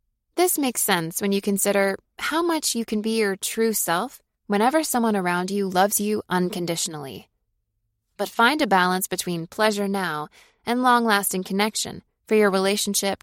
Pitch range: 175-225 Hz